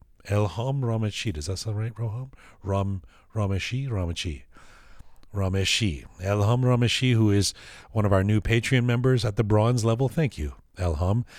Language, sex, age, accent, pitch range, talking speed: English, male, 40-59, American, 95-130 Hz, 150 wpm